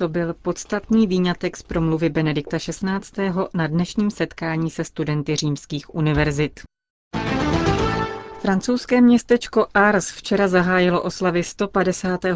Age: 30-49